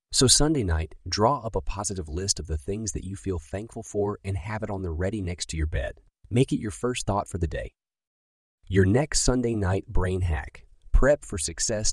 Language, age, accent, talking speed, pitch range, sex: English, 30-49, American, 215 wpm, 85-115 Hz, male